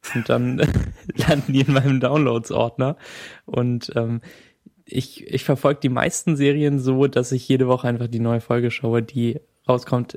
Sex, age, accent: male, 20-39, German